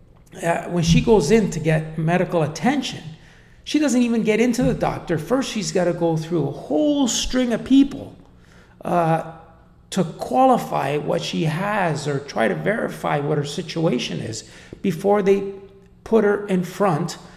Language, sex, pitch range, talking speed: English, male, 145-195 Hz, 160 wpm